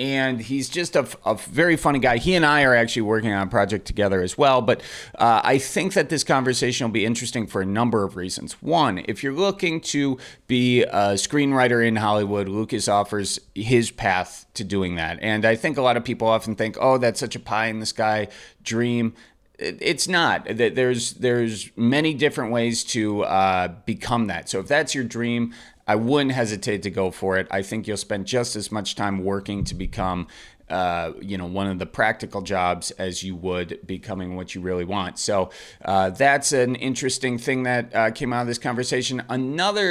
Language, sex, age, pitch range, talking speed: English, male, 30-49, 100-125 Hz, 205 wpm